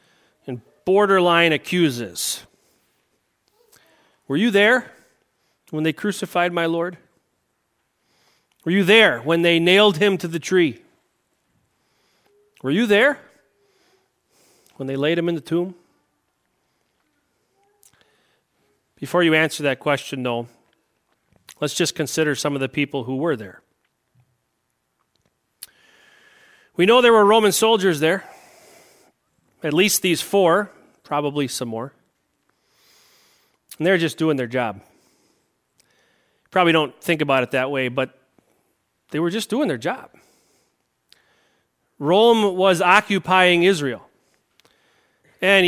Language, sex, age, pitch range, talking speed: English, male, 40-59, 145-190 Hz, 110 wpm